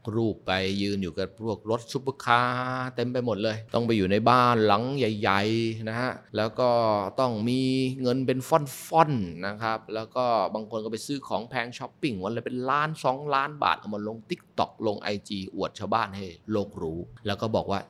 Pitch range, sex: 95-120 Hz, male